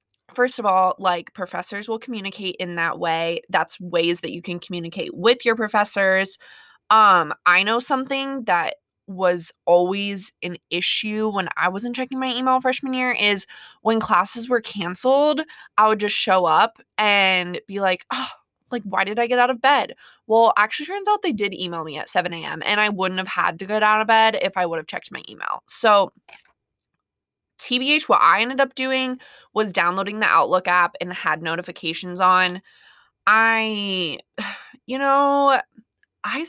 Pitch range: 180-245 Hz